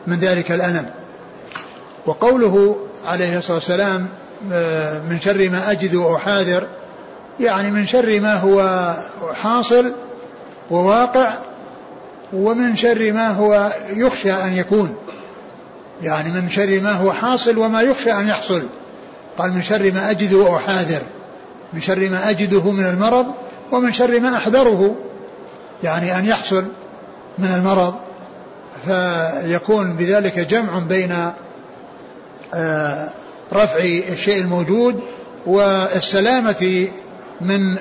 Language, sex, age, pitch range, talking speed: Arabic, male, 60-79, 180-215 Hz, 105 wpm